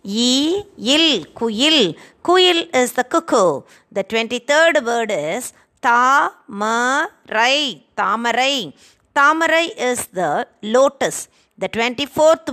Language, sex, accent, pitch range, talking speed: Tamil, female, native, 235-295 Hz, 120 wpm